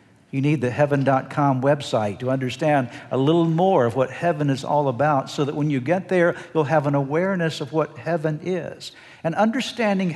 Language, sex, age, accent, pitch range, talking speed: English, male, 60-79, American, 130-170 Hz, 190 wpm